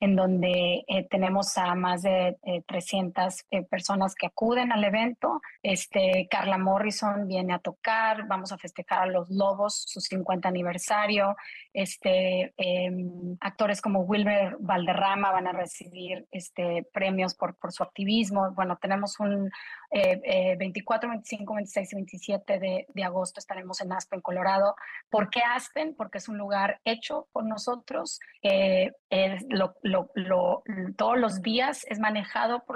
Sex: female